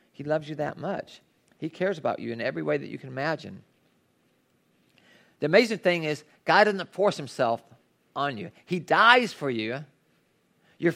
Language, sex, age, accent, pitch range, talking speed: English, male, 40-59, American, 135-190 Hz, 170 wpm